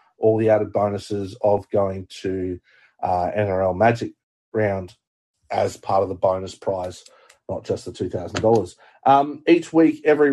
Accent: Australian